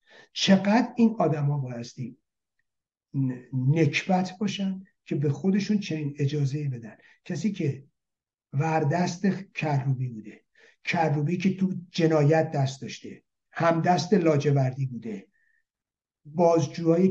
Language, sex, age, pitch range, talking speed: Persian, male, 60-79, 145-190 Hz, 100 wpm